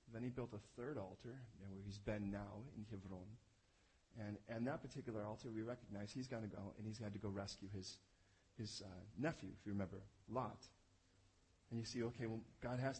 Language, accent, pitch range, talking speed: English, American, 105-130 Hz, 210 wpm